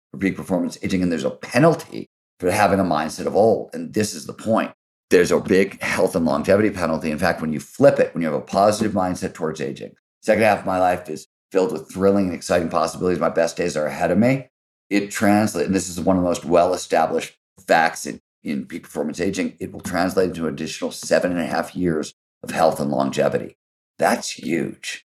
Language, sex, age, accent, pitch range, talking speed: English, male, 50-69, American, 85-100 Hz, 220 wpm